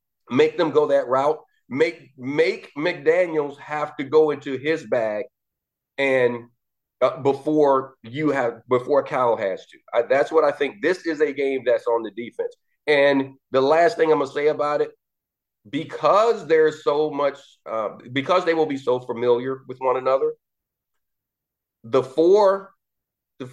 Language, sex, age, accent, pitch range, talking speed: English, male, 40-59, American, 135-190 Hz, 160 wpm